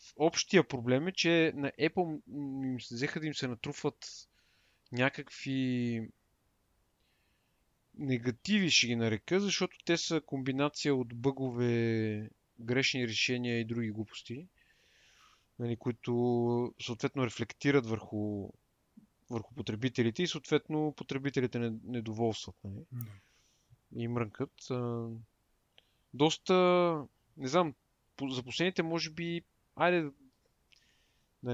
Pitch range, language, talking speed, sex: 120-160 Hz, Bulgarian, 105 wpm, male